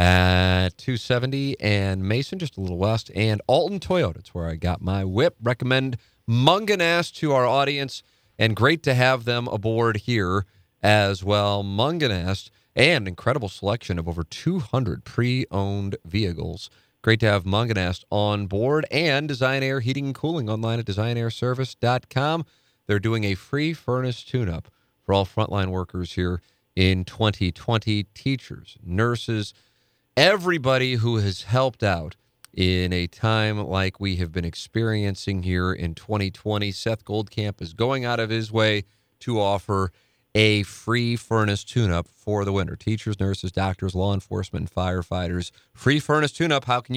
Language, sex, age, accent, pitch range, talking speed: English, male, 40-59, American, 95-125 Hz, 145 wpm